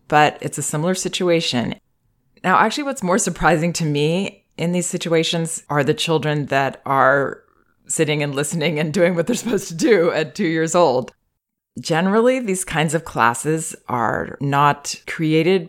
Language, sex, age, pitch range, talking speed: English, female, 20-39, 130-165 Hz, 160 wpm